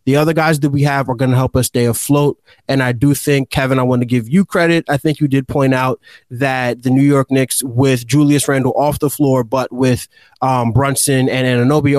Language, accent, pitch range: English, American, 130-150 Hz